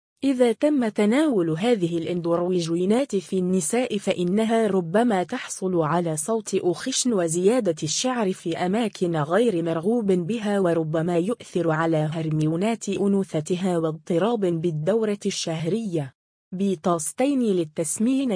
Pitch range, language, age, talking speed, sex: 170-225 Hz, Arabic, 20-39, 100 wpm, female